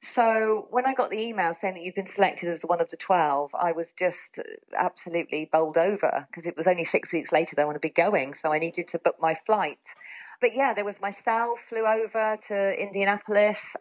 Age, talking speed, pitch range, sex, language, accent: 40-59, 215 wpm, 175-215 Hz, female, English, British